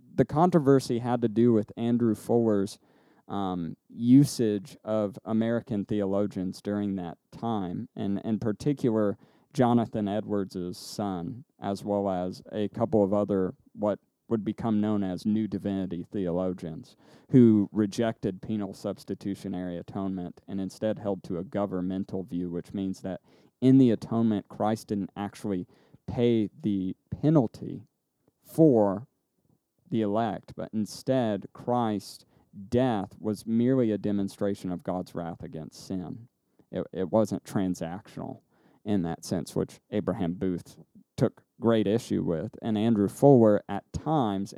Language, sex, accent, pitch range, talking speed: English, male, American, 95-115 Hz, 130 wpm